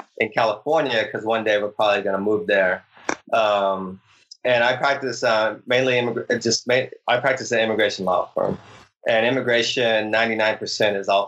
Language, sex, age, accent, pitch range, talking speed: English, male, 20-39, American, 100-120 Hz, 170 wpm